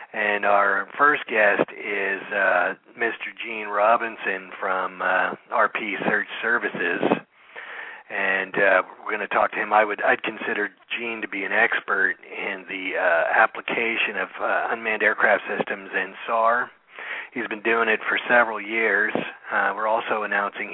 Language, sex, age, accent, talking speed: English, male, 40-59, American, 150 wpm